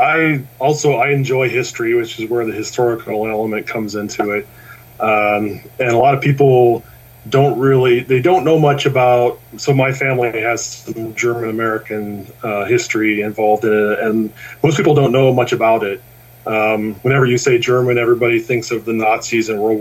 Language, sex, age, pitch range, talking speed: English, male, 30-49, 110-130 Hz, 175 wpm